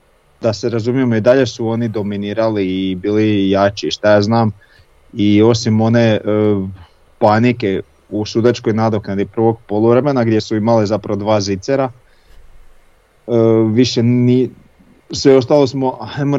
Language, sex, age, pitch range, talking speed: Croatian, male, 30-49, 100-120 Hz, 135 wpm